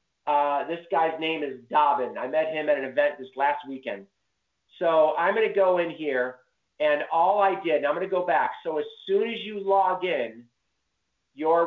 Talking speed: 205 wpm